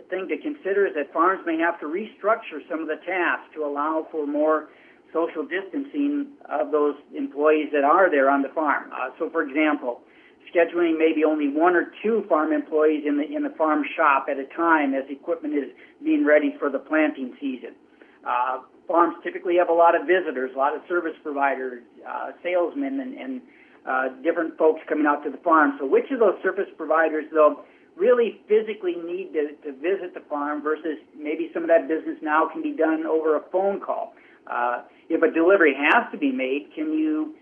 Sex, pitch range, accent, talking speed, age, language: male, 150-195 Hz, American, 195 wpm, 50-69, English